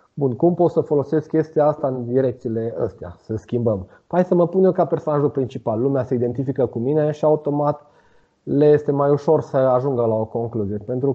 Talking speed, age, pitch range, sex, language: 200 wpm, 30-49, 125-170 Hz, male, Romanian